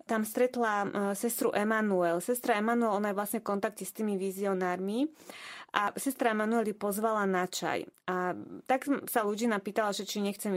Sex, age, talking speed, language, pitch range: female, 20-39, 160 wpm, Slovak, 200-240 Hz